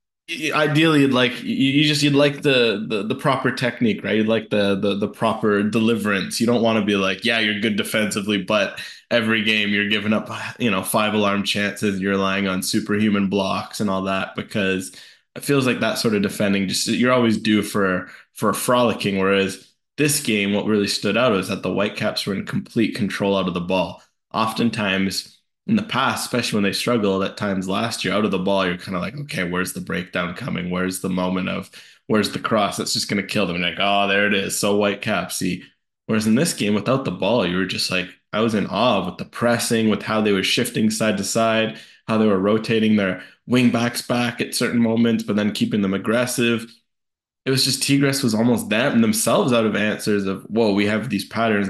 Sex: male